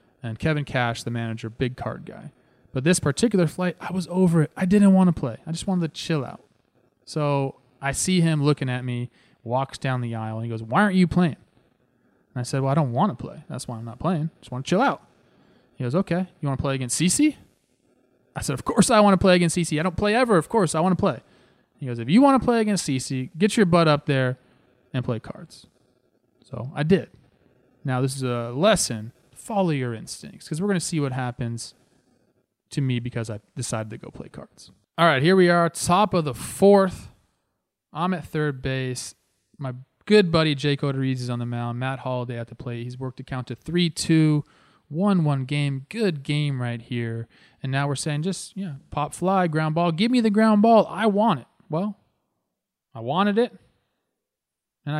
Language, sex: English, male